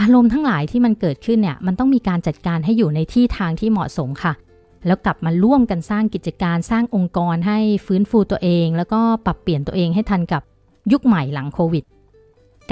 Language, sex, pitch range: Thai, female, 170-215 Hz